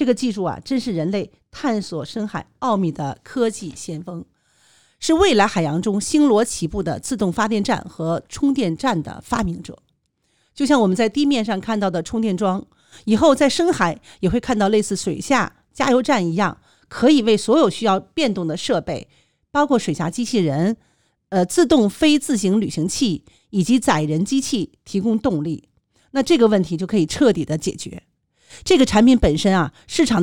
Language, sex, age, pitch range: Chinese, female, 50-69, 180-270 Hz